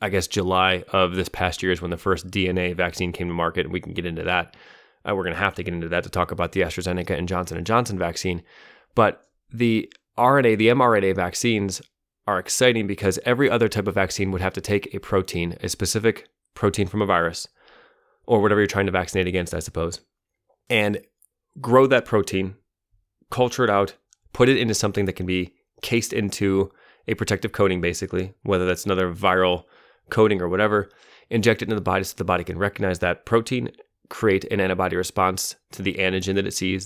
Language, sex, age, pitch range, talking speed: English, male, 20-39, 90-105 Hz, 200 wpm